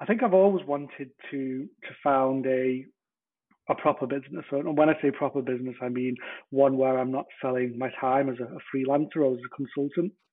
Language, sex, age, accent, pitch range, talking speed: English, male, 30-49, British, 130-145 Hz, 210 wpm